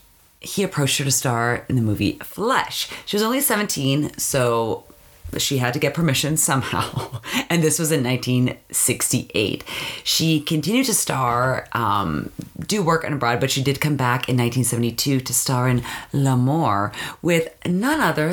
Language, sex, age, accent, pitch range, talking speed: English, female, 30-49, American, 120-160 Hz, 155 wpm